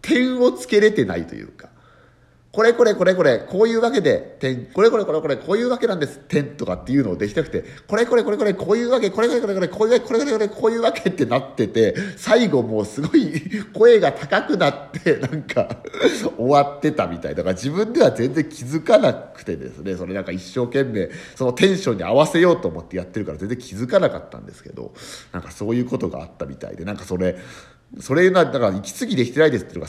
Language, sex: Japanese, male